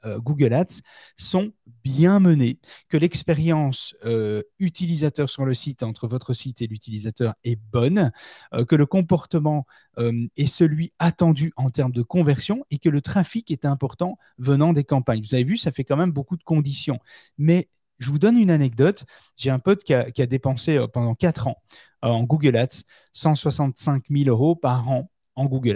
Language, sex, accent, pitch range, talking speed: French, male, French, 125-160 Hz, 185 wpm